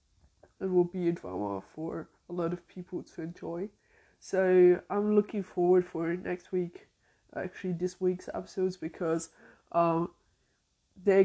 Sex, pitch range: female, 170-190 Hz